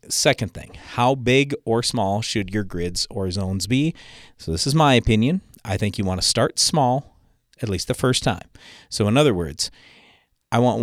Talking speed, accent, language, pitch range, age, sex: 195 wpm, American, English, 95-125 Hz, 40-59, male